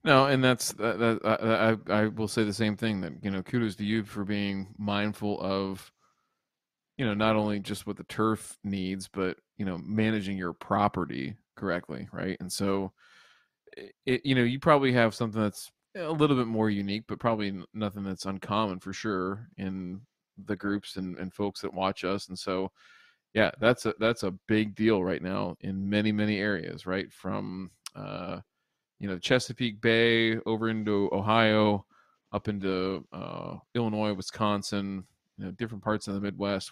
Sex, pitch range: male, 95-110 Hz